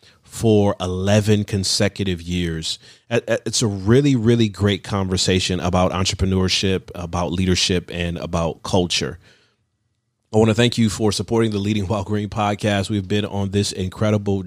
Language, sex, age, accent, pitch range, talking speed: English, male, 30-49, American, 95-115 Hz, 135 wpm